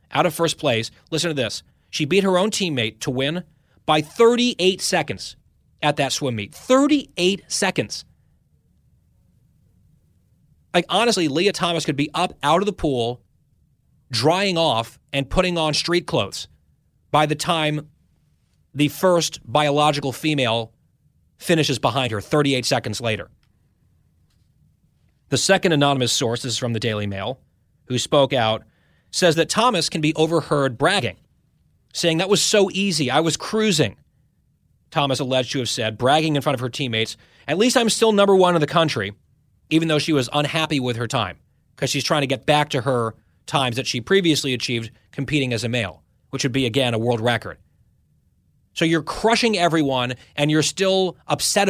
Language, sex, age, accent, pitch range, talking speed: English, male, 30-49, American, 120-165 Hz, 165 wpm